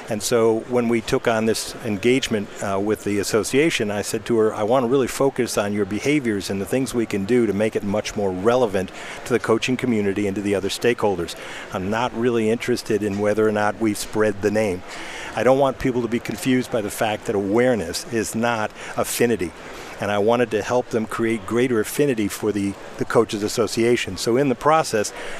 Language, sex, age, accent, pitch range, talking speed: English, male, 50-69, American, 105-125 Hz, 215 wpm